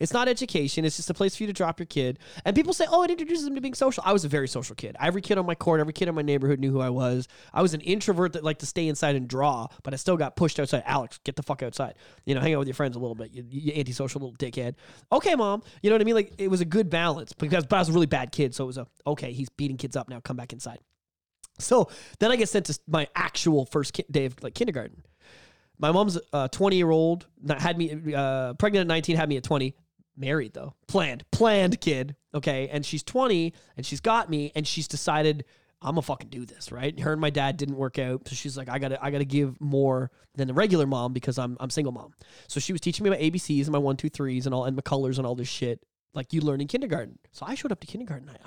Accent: American